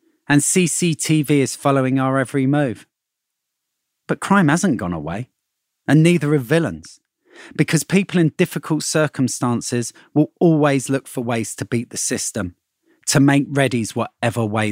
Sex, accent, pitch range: male, British, 120-180 Hz